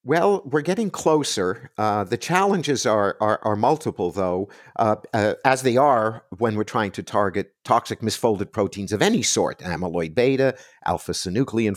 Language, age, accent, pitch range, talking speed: English, 50-69, American, 100-140 Hz, 160 wpm